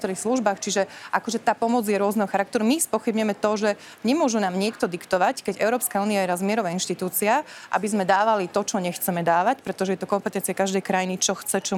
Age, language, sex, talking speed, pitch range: 30-49, Slovak, female, 195 wpm, 195-230 Hz